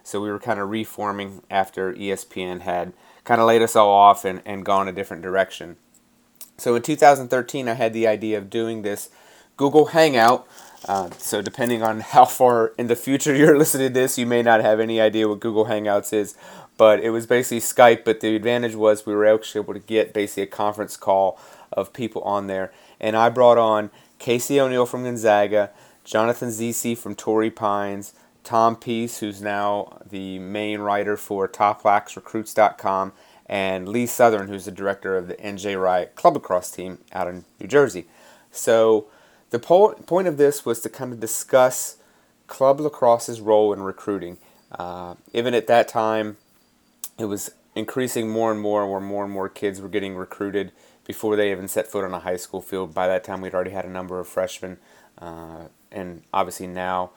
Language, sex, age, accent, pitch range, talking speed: English, male, 30-49, American, 95-115 Hz, 185 wpm